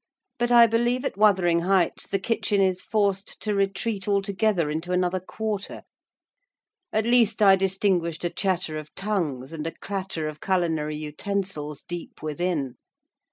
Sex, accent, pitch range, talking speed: female, British, 155-205 Hz, 145 wpm